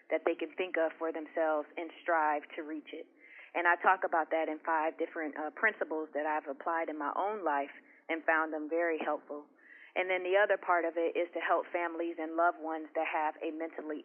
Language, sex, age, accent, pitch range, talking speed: English, female, 30-49, American, 160-180 Hz, 220 wpm